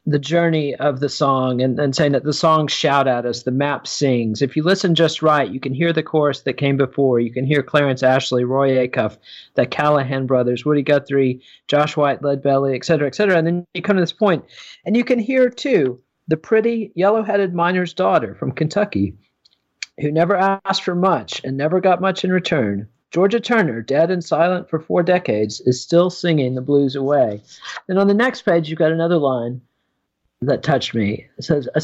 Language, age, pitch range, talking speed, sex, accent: English, 40-59, 135-180 Hz, 205 wpm, male, American